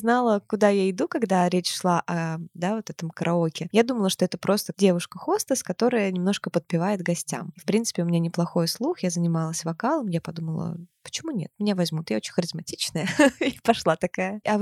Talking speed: 190 wpm